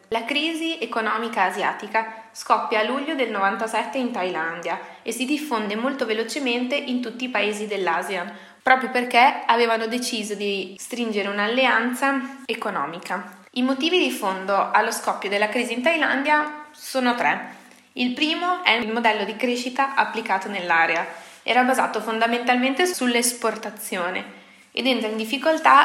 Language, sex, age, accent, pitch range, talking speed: Italian, female, 20-39, native, 205-250 Hz, 135 wpm